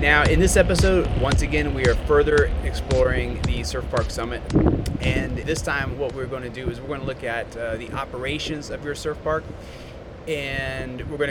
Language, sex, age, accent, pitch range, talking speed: English, male, 30-49, American, 115-145 Hz, 200 wpm